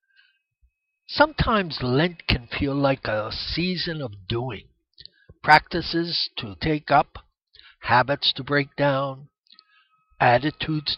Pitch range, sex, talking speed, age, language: 135-195 Hz, male, 100 wpm, 60-79, English